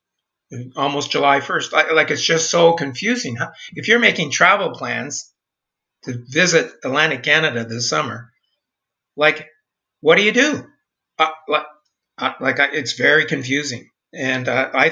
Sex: male